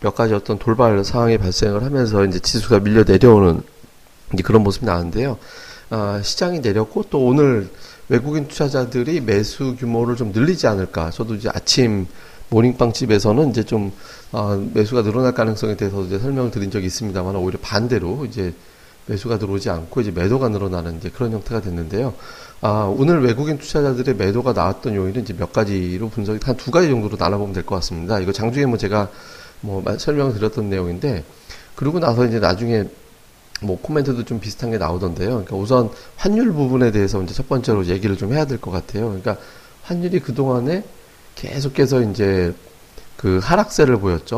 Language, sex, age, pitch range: Korean, male, 30-49, 100-130 Hz